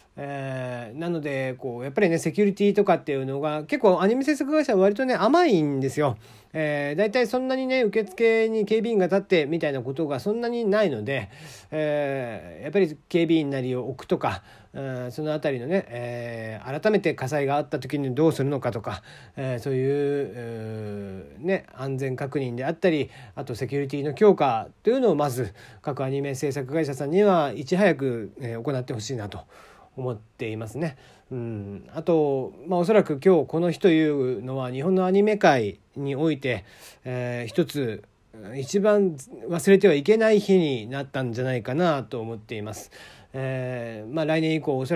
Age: 40-59